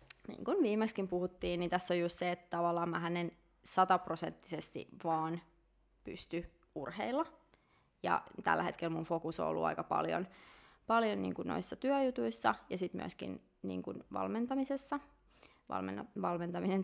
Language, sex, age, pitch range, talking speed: Finnish, female, 20-39, 160-190 Hz, 130 wpm